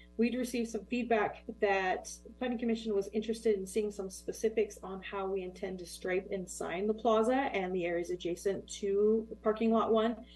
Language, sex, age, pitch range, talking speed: English, female, 30-49, 180-220 Hz, 185 wpm